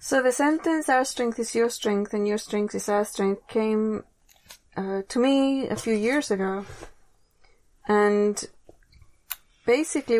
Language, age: English, 30-49